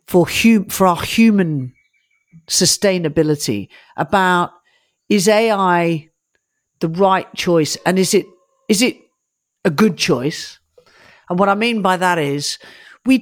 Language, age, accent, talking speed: English, 50-69, British, 125 wpm